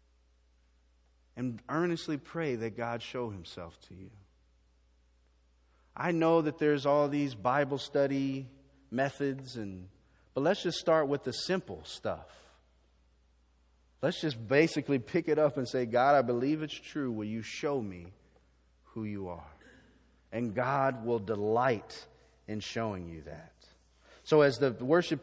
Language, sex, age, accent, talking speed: English, male, 30-49, American, 140 wpm